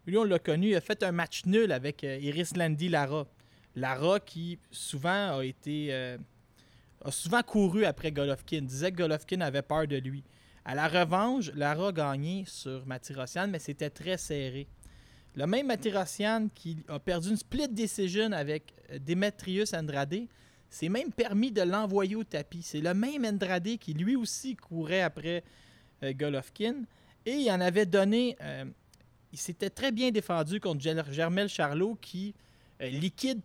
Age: 20-39